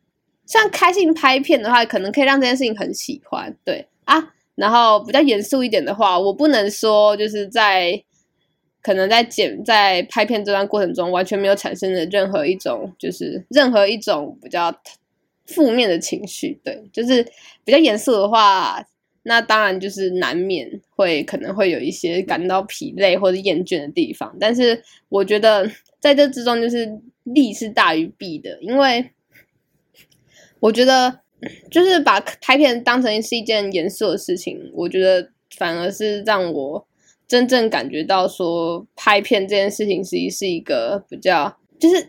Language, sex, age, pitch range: Chinese, female, 10-29, 195-275 Hz